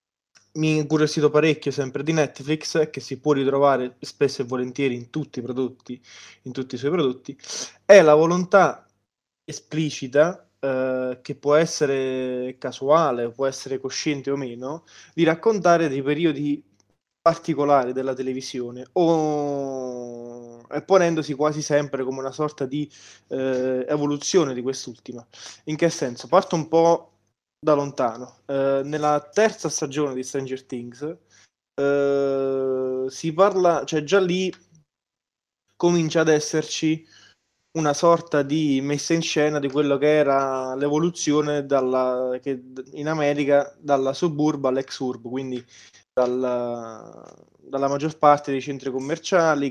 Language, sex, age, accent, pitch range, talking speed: Italian, male, 20-39, native, 130-155 Hz, 130 wpm